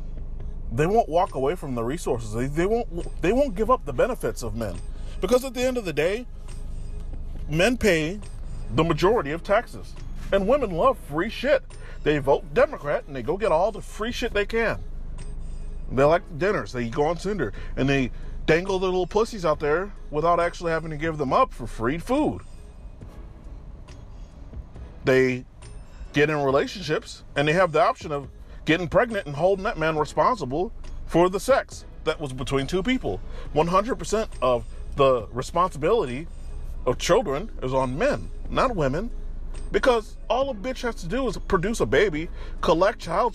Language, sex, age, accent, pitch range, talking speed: English, male, 30-49, American, 130-220 Hz, 170 wpm